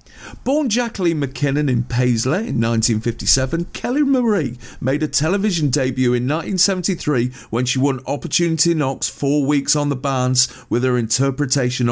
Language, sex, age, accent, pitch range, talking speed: English, male, 40-59, British, 125-155 Hz, 140 wpm